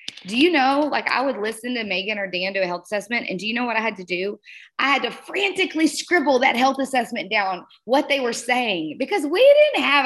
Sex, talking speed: female, 245 wpm